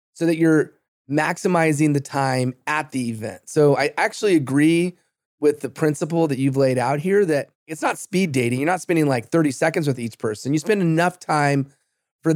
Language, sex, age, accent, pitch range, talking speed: English, male, 30-49, American, 140-170 Hz, 195 wpm